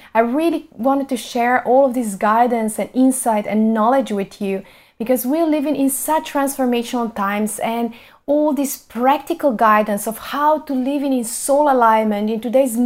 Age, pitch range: 30-49, 215-255 Hz